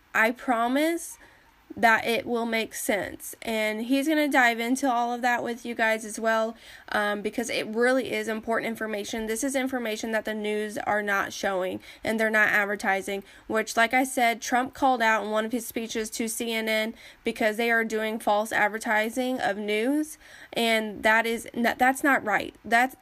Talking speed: 185 wpm